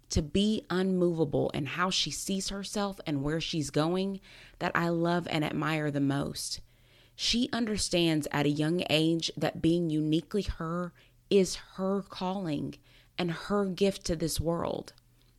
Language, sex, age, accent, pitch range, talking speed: English, female, 30-49, American, 140-190 Hz, 150 wpm